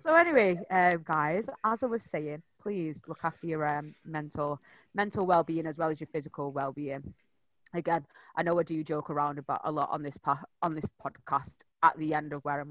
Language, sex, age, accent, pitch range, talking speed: English, female, 20-39, British, 145-170 Hz, 215 wpm